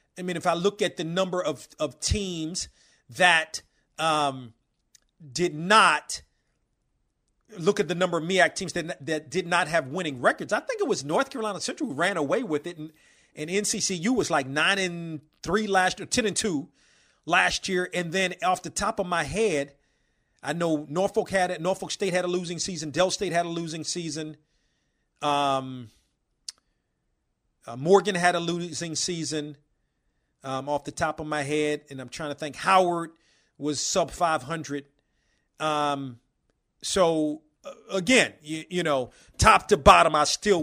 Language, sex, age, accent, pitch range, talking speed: English, male, 40-59, American, 150-190 Hz, 170 wpm